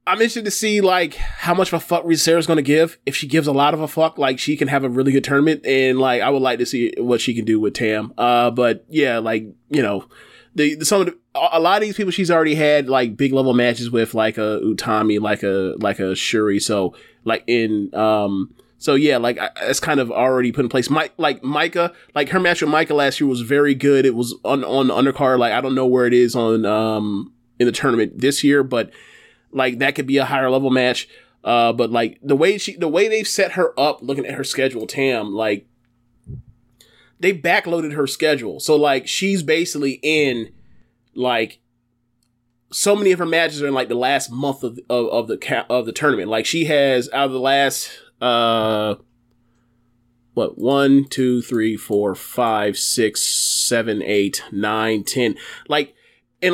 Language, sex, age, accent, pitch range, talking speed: English, male, 20-39, American, 120-150 Hz, 215 wpm